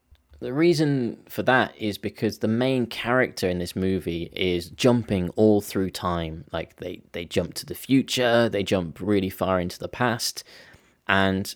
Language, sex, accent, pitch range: Japanese, male, British, 90-110 Hz